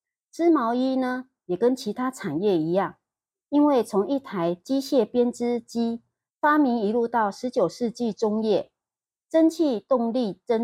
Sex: female